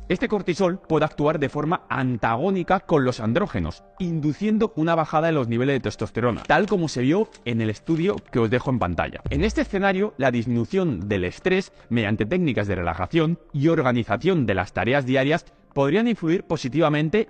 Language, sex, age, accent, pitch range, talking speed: Spanish, male, 30-49, Spanish, 115-170 Hz, 175 wpm